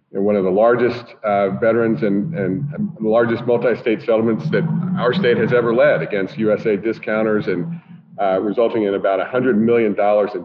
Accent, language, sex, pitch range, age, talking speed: American, English, male, 100-125 Hz, 40-59, 165 wpm